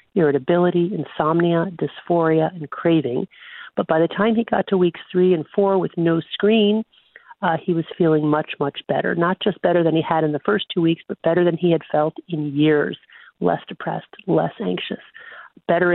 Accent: American